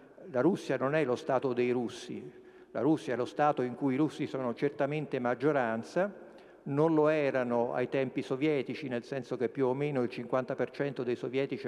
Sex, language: male, Italian